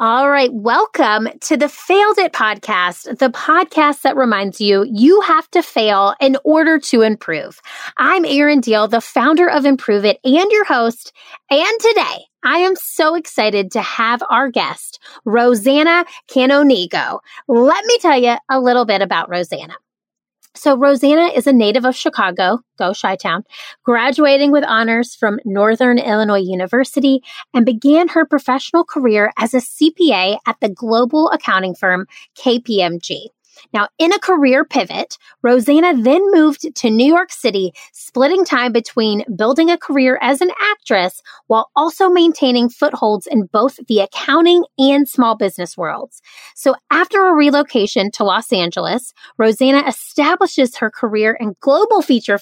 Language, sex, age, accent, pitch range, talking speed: English, female, 30-49, American, 220-305 Hz, 150 wpm